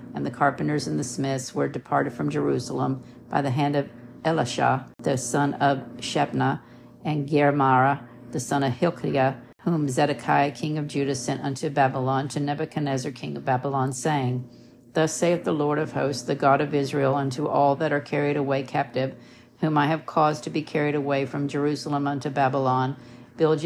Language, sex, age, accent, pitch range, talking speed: English, female, 50-69, American, 130-150 Hz, 175 wpm